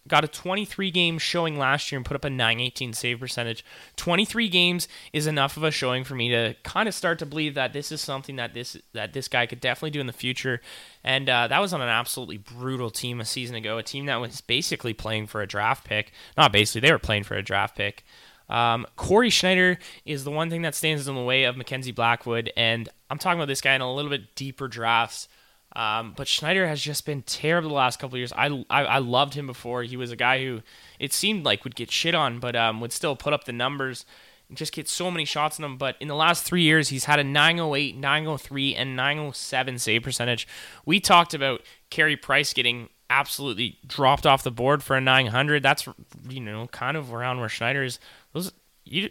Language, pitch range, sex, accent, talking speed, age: English, 120-150 Hz, male, American, 225 wpm, 20-39